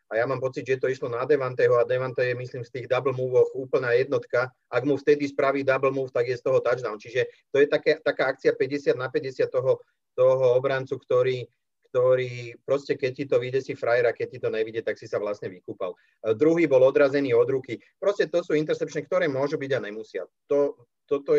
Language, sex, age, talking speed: Czech, male, 30-49, 215 wpm